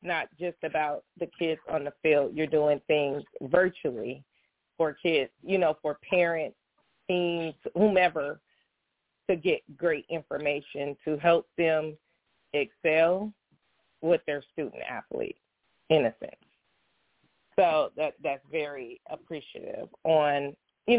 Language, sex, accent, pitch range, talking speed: English, female, American, 150-180 Hz, 120 wpm